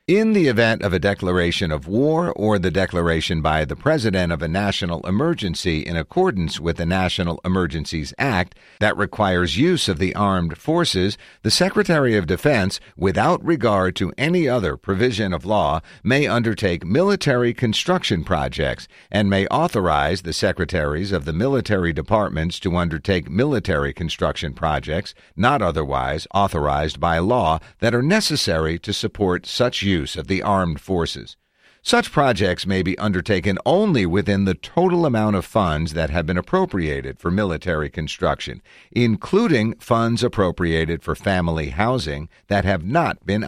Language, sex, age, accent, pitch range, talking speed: English, male, 50-69, American, 85-110 Hz, 150 wpm